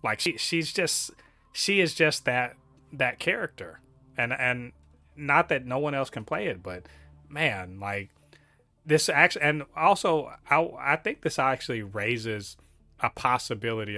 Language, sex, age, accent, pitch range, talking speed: English, male, 30-49, American, 100-125 Hz, 150 wpm